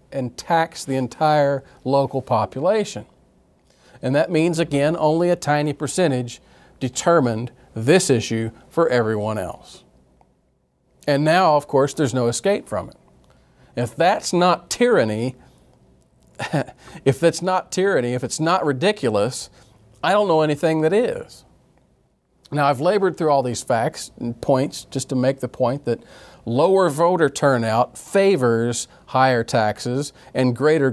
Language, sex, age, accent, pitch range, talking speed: English, male, 40-59, American, 125-155 Hz, 135 wpm